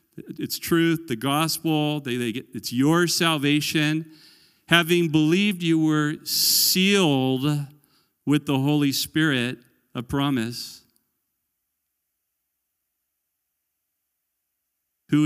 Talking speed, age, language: 85 wpm, 40-59, English